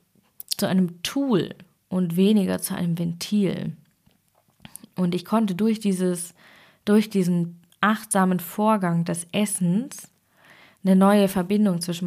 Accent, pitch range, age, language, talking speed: German, 175-205 Hz, 20-39, German, 115 wpm